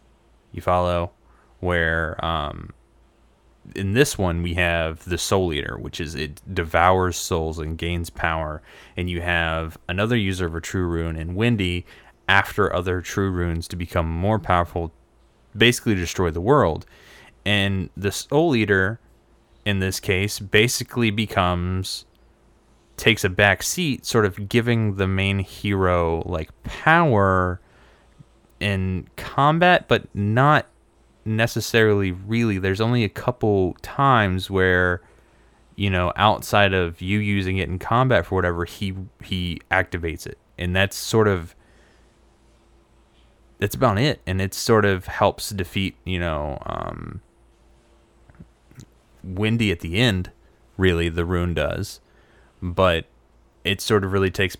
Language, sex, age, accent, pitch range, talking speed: English, male, 20-39, American, 85-105 Hz, 135 wpm